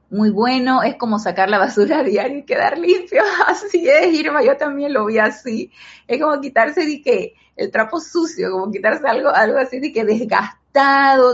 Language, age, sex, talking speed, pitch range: Spanish, 30-49, female, 190 wpm, 180-245 Hz